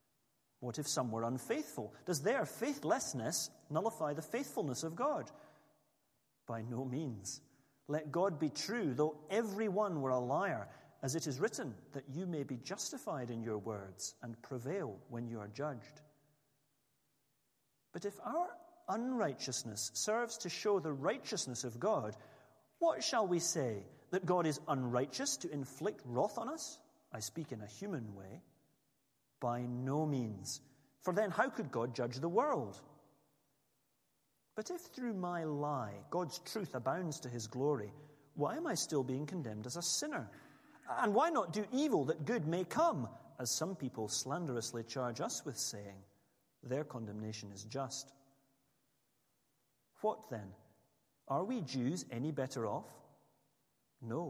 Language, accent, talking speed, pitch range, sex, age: English, British, 150 wpm, 125-180 Hz, male, 40-59